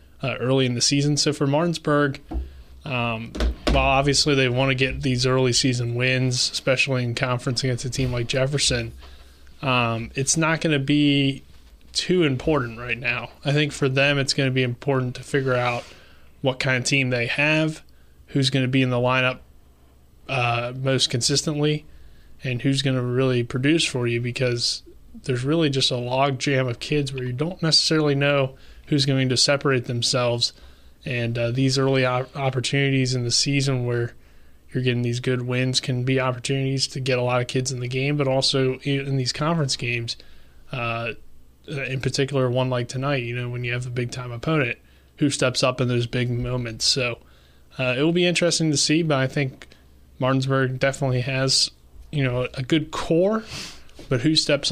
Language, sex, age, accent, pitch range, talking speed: English, male, 20-39, American, 120-140 Hz, 185 wpm